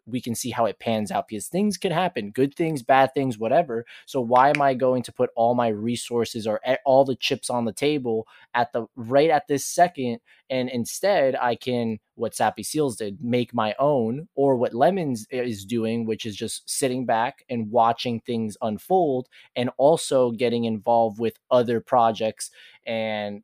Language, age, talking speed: English, 20-39, 185 wpm